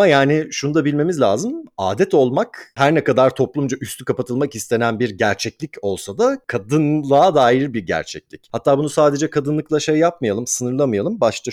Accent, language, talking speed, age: native, Turkish, 155 wpm, 40-59